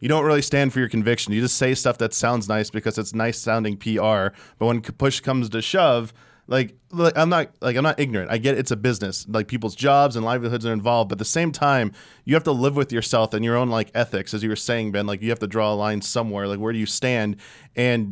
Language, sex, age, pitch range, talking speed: English, male, 20-39, 110-135 Hz, 265 wpm